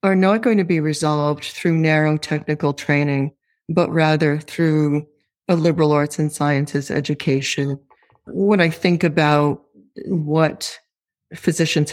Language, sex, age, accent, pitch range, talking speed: English, female, 40-59, American, 150-175 Hz, 125 wpm